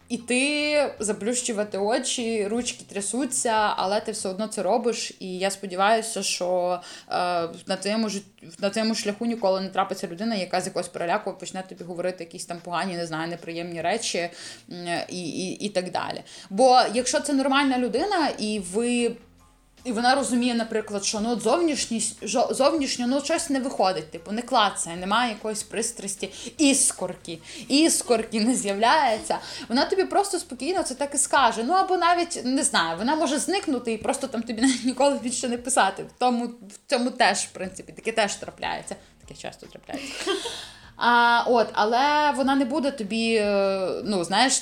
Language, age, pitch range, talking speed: Ukrainian, 20-39, 195-255 Hz, 160 wpm